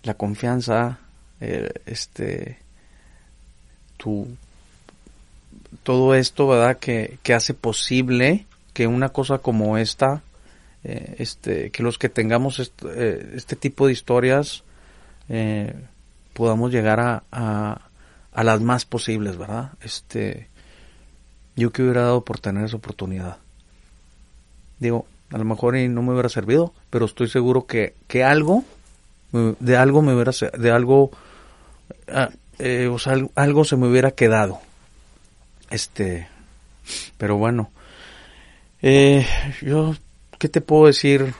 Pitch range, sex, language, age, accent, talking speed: 105-130 Hz, male, Spanish, 40-59, Mexican, 120 wpm